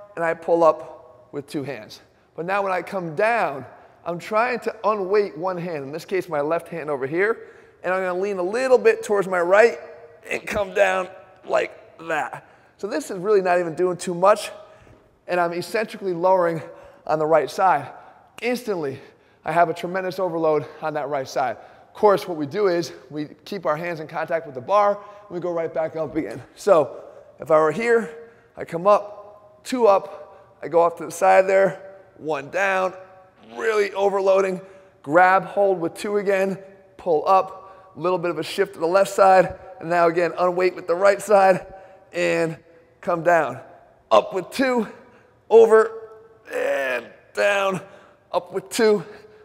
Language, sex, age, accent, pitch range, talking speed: English, male, 20-39, American, 165-200 Hz, 180 wpm